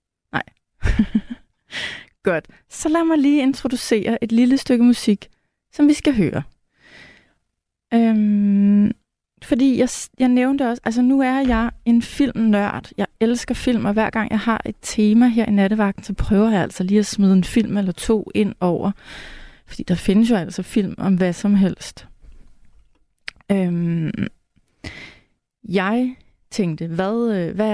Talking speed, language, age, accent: 140 wpm, Danish, 30-49, native